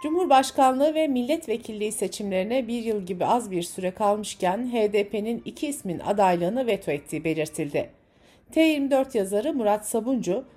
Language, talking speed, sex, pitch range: Turkish, 125 wpm, female, 190-275 Hz